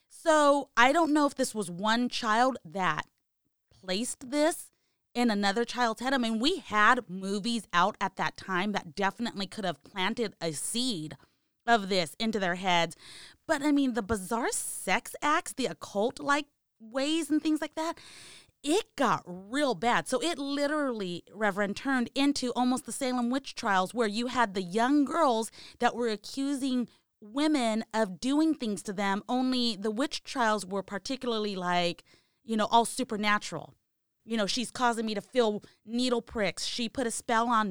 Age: 30-49